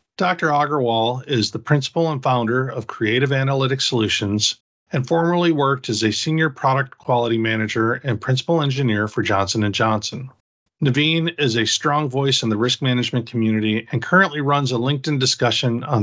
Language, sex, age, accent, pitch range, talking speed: English, male, 40-59, American, 110-135 Hz, 160 wpm